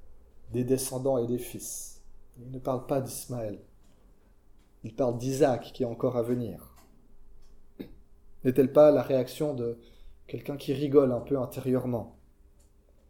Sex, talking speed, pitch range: male, 135 wpm, 115-145 Hz